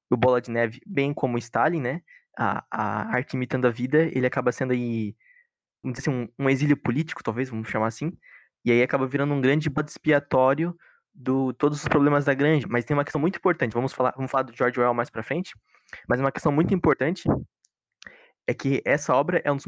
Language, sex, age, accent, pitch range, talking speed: Portuguese, male, 20-39, Brazilian, 125-150 Hz, 210 wpm